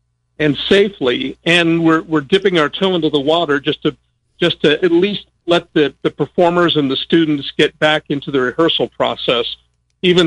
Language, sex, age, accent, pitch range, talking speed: English, male, 50-69, American, 135-170 Hz, 180 wpm